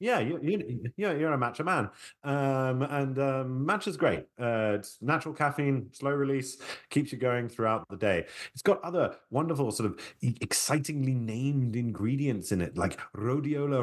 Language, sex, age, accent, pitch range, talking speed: English, male, 30-49, British, 100-145 Hz, 155 wpm